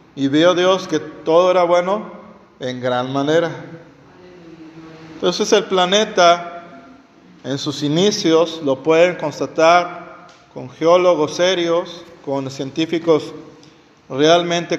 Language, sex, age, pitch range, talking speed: Spanish, male, 40-59, 155-190 Hz, 100 wpm